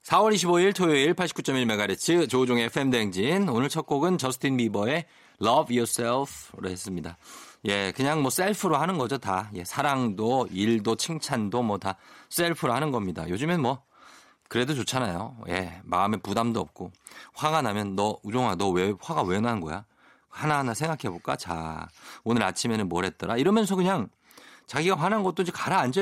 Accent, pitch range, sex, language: native, 105-160 Hz, male, Korean